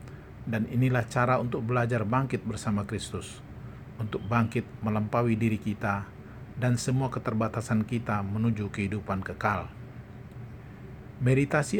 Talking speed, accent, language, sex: 105 wpm, native, Indonesian, male